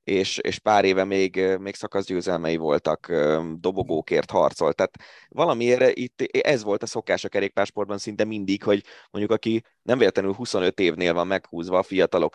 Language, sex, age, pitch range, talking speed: Hungarian, male, 20-39, 90-115 Hz, 155 wpm